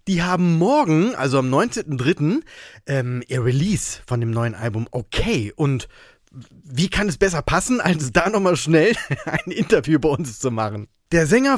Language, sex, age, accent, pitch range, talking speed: German, male, 30-49, German, 135-185 Hz, 165 wpm